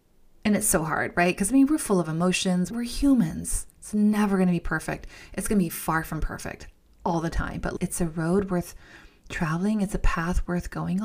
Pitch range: 175-240 Hz